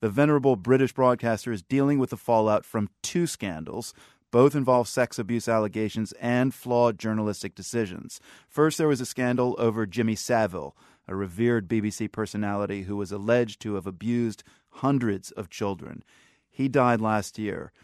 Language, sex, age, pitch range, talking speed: English, male, 30-49, 105-125 Hz, 155 wpm